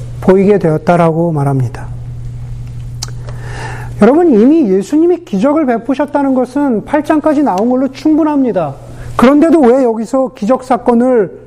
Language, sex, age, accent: Korean, male, 40-59, native